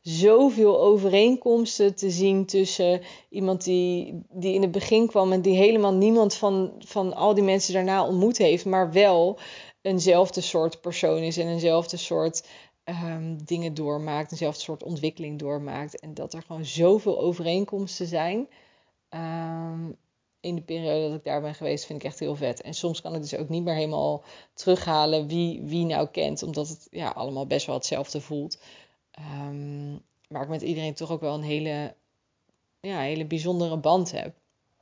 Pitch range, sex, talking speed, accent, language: 160-190 Hz, female, 160 wpm, Dutch, Dutch